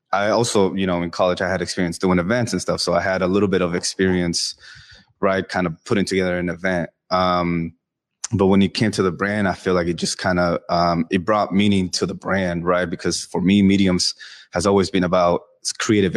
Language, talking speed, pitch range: English, 225 wpm, 90-105 Hz